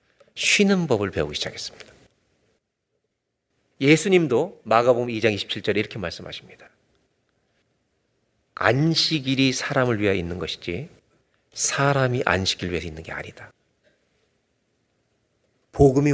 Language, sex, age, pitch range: Korean, male, 40-59, 110-160 Hz